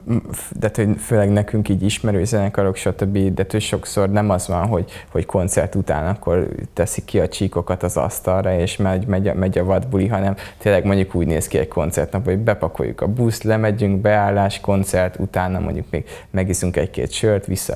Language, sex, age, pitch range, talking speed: English, male, 20-39, 90-100 Hz, 175 wpm